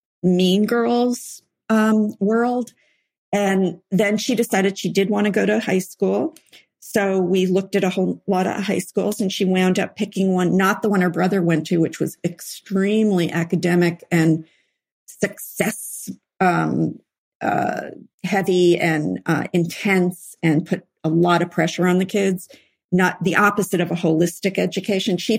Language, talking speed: English, 160 wpm